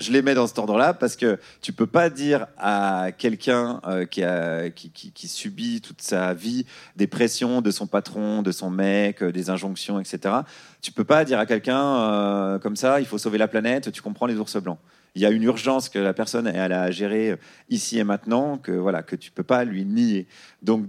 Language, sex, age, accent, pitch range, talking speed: French, male, 30-49, French, 100-135 Hz, 230 wpm